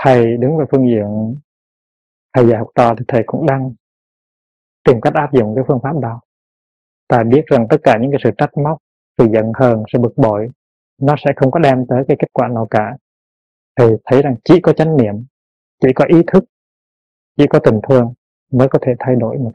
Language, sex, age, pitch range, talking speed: Vietnamese, male, 30-49, 115-145 Hz, 210 wpm